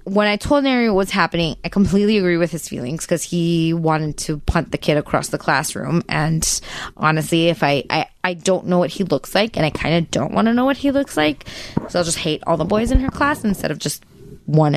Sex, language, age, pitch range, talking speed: female, English, 20-39, 170-220 Hz, 250 wpm